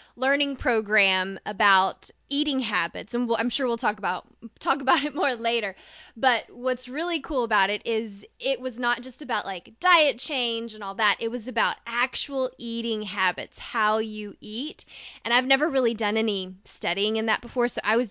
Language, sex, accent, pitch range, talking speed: English, female, American, 200-245 Hz, 190 wpm